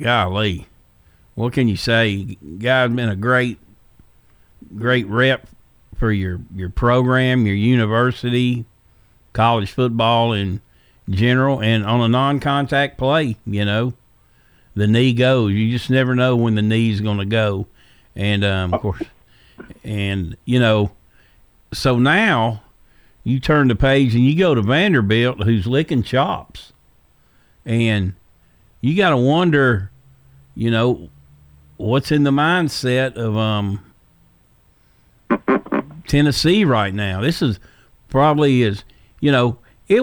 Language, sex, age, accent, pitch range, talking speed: English, male, 50-69, American, 105-130 Hz, 125 wpm